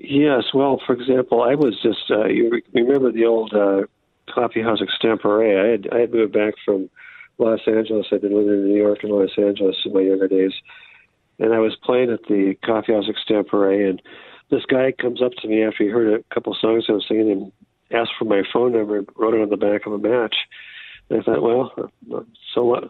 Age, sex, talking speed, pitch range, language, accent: 50-69, male, 210 wpm, 100-120 Hz, English, American